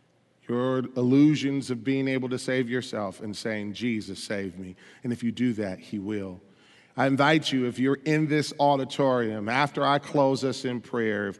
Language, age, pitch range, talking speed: English, 40-59, 110-130 Hz, 185 wpm